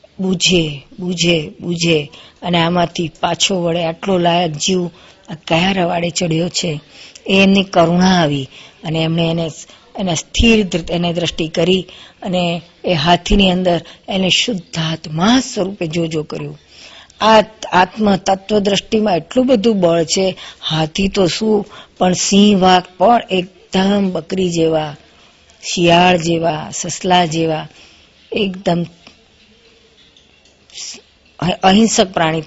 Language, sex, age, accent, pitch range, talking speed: Gujarati, female, 50-69, native, 165-190 Hz, 45 wpm